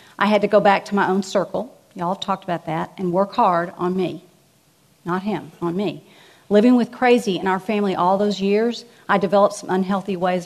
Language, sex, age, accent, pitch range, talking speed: English, female, 40-59, American, 175-205 Hz, 210 wpm